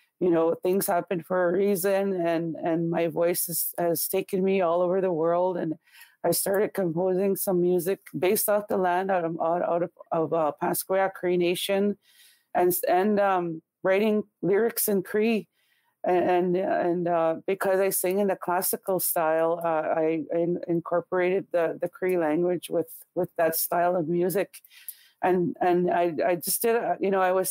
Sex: female